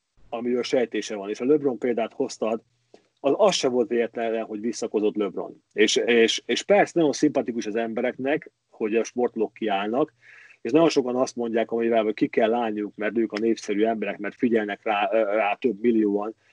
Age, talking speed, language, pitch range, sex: 40-59, 175 wpm, Hungarian, 115-150 Hz, male